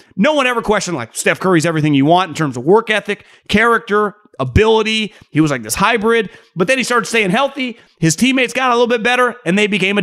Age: 30-49